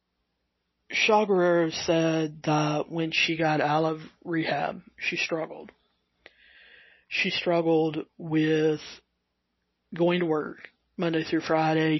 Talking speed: 105 wpm